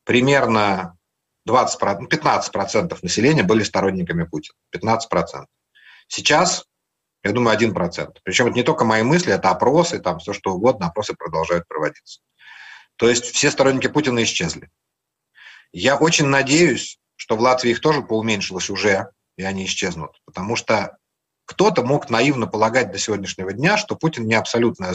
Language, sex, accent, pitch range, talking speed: Russian, male, native, 105-145 Hz, 140 wpm